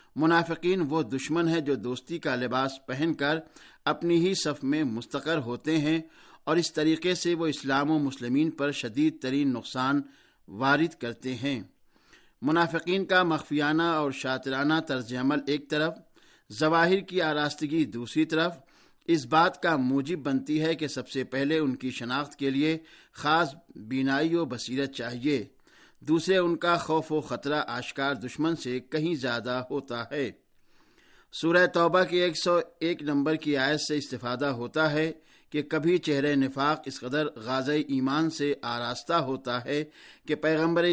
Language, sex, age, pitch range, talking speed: Urdu, male, 50-69, 135-160 Hz, 150 wpm